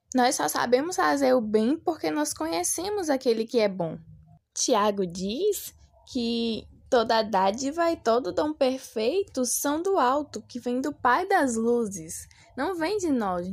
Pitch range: 225-320 Hz